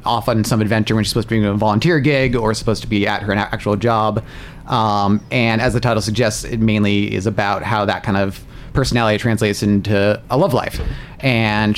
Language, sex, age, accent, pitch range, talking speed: English, male, 30-49, American, 105-125 Hz, 215 wpm